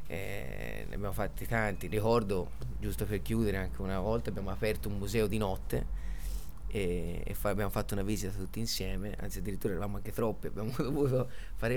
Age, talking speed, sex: 30-49, 175 wpm, male